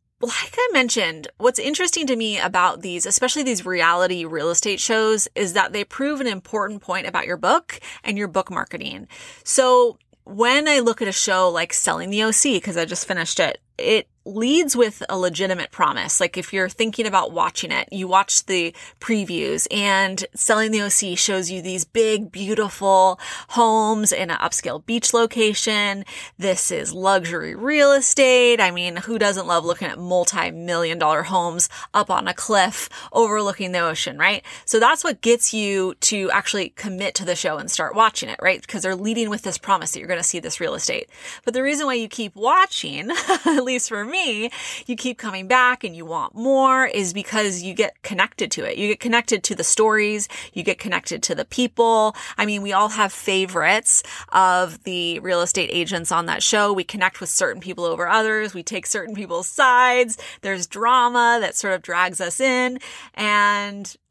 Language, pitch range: English, 185-240 Hz